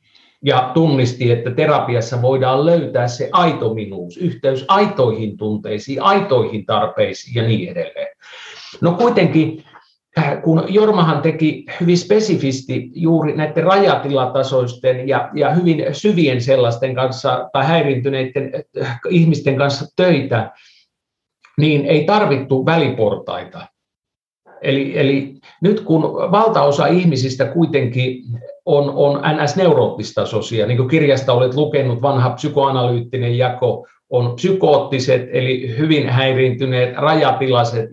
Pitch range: 120-155 Hz